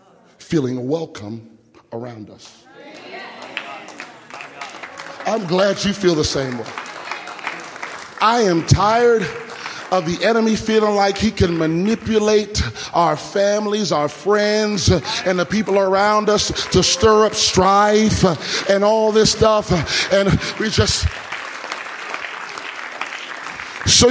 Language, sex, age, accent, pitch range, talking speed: English, male, 30-49, American, 185-255 Hz, 105 wpm